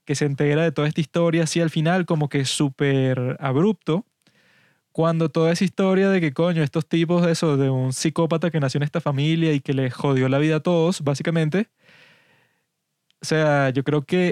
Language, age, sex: Spanish, 20-39, male